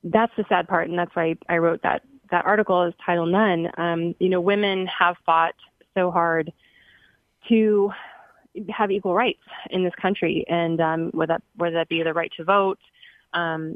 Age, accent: 20-39, American